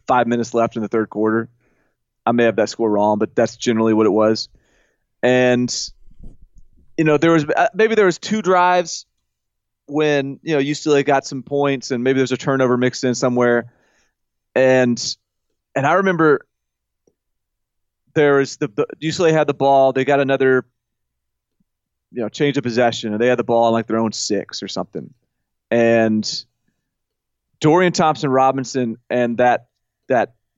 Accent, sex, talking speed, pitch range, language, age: American, male, 165 wpm, 115-150 Hz, English, 30-49